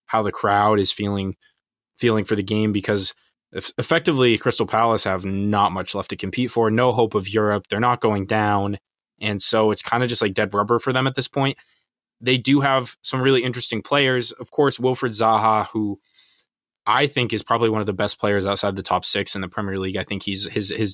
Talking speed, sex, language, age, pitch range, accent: 220 wpm, male, English, 20-39, 100-125 Hz, American